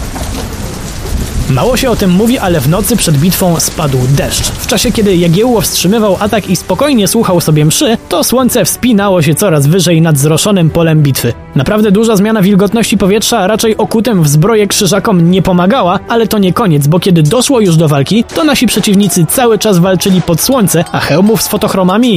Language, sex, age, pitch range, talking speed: Polish, male, 20-39, 165-220 Hz, 180 wpm